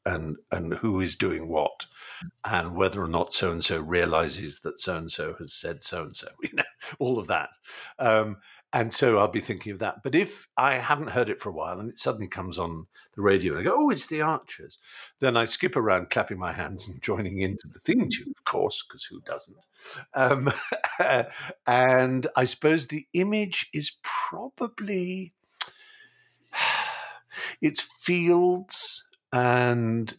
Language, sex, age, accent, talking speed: English, male, 50-69, British, 165 wpm